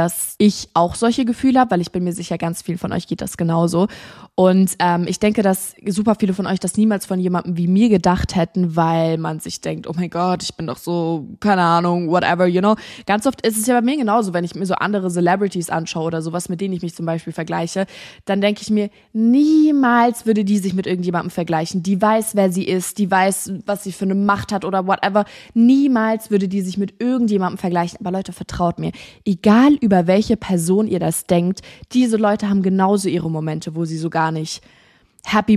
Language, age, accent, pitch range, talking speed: German, 20-39, German, 175-215 Hz, 225 wpm